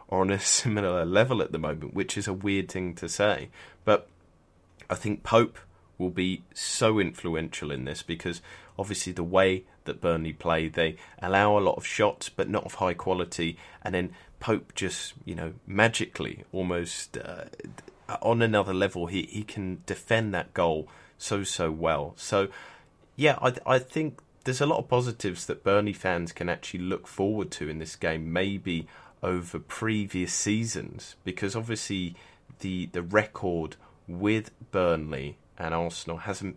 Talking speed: 160 wpm